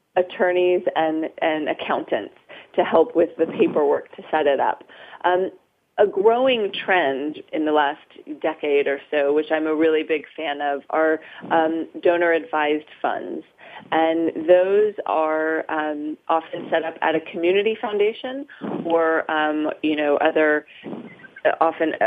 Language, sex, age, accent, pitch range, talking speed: English, female, 30-49, American, 155-190 Hz, 140 wpm